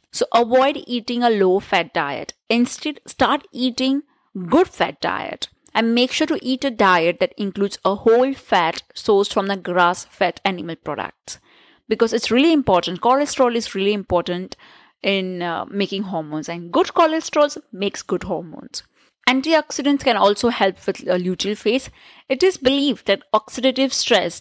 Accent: Indian